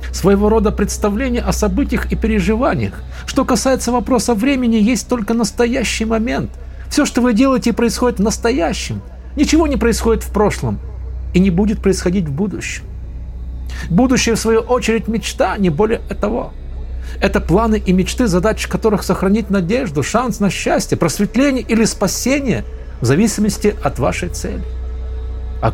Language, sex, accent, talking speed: Russian, male, native, 145 wpm